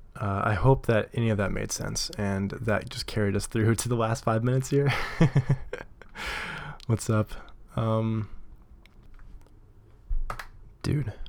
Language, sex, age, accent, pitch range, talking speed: English, male, 20-39, American, 95-120 Hz, 135 wpm